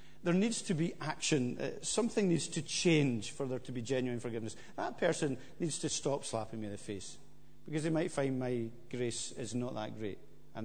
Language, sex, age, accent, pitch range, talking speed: English, male, 50-69, British, 130-185 Hz, 210 wpm